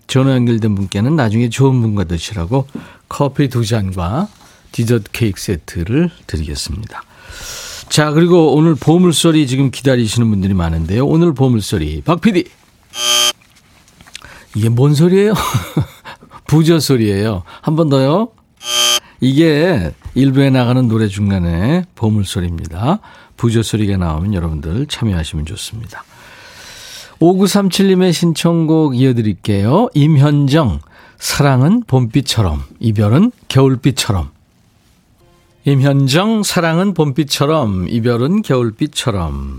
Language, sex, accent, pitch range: Korean, male, native, 100-160 Hz